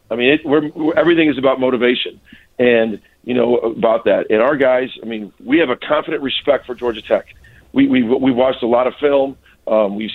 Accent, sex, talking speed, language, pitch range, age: American, male, 220 wpm, English, 130-180 Hz, 50-69